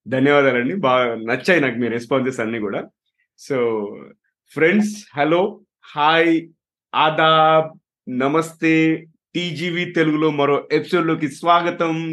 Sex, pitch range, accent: male, 125-165 Hz, native